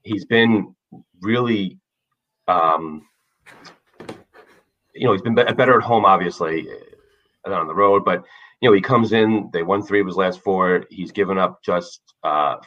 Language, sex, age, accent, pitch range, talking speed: English, male, 30-49, American, 85-110 Hz, 155 wpm